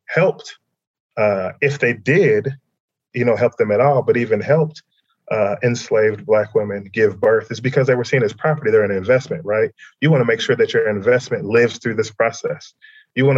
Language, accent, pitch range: English, American, 105-140 Hz